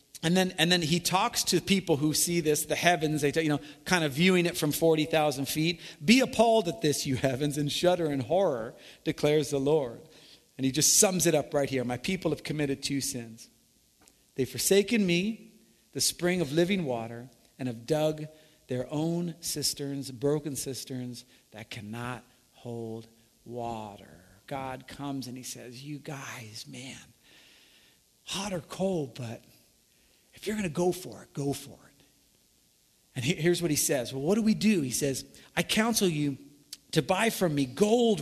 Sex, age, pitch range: male, 50-69, 135-175 Hz